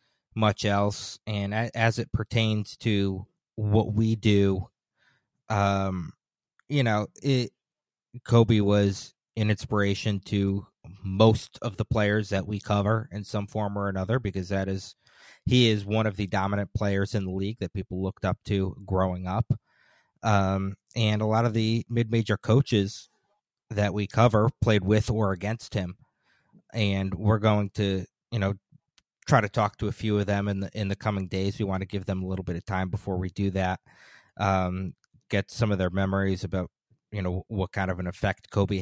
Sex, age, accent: male, 30-49, American